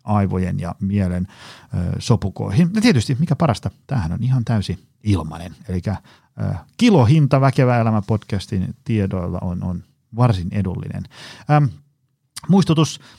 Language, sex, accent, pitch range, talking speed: Finnish, male, native, 95-130 Hz, 120 wpm